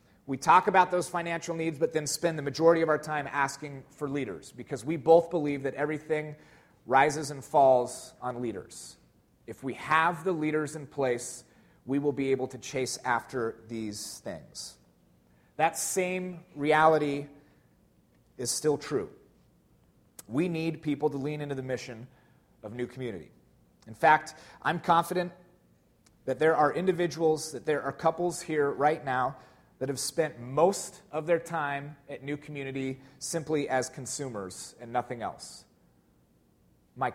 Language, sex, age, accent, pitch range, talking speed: English, male, 30-49, American, 130-155 Hz, 150 wpm